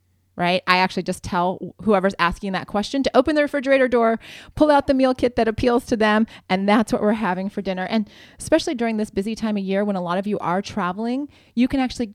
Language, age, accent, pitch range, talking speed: English, 30-49, American, 185-235 Hz, 235 wpm